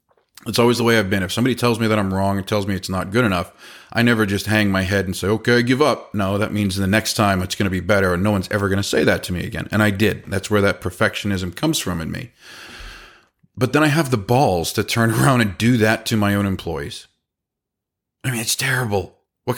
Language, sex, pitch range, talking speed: English, male, 100-125 Hz, 260 wpm